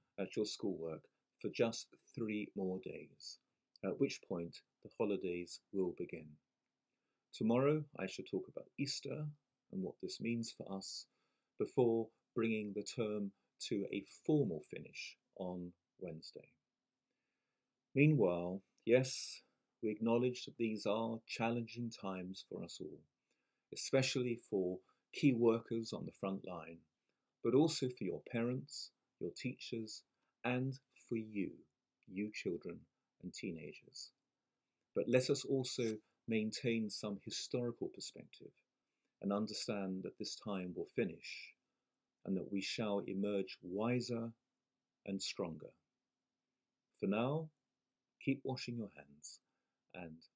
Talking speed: 120 wpm